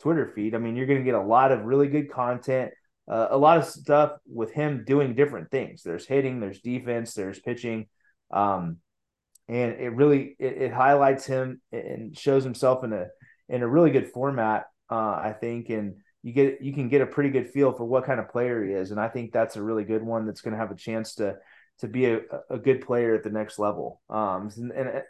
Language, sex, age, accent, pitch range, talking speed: English, male, 30-49, American, 110-135 Hz, 230 wpm